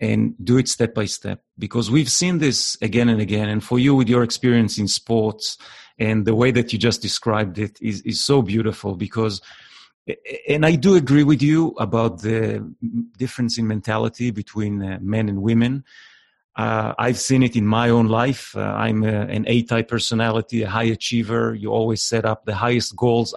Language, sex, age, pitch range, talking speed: English, male, 40-59, 105-125 Hz, 185 wpm